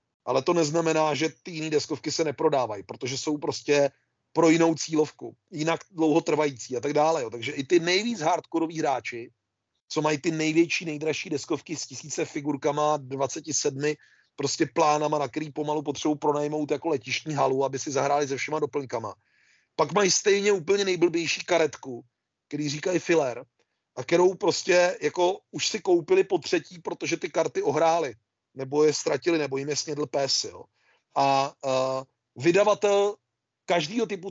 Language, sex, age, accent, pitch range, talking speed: Czech, male, 30-49, native, 135-170 Hz, 150 wpm